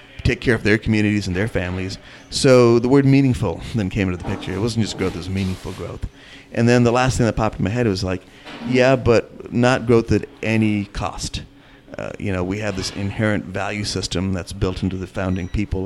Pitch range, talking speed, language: 95-115 Hz, 225 wpm, English